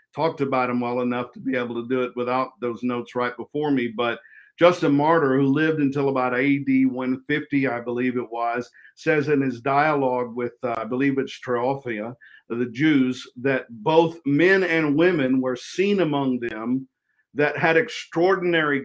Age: 50-69